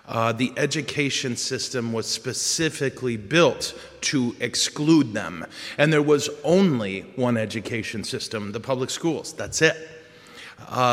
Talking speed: 125 wpm